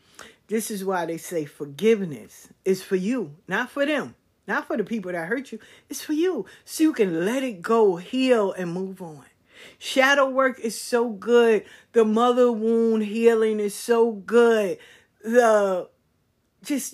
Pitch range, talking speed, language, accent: 180-245 Hz, 165 wpm, English, American